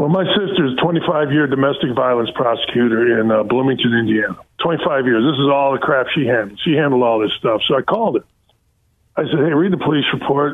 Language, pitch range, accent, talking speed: English, 135-185 Hz, American, 210 wpm